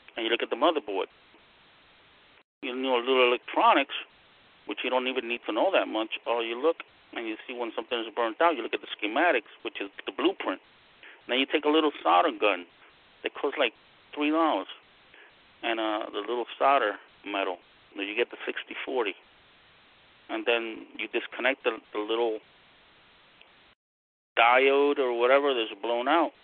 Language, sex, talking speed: English, male, 170 wpm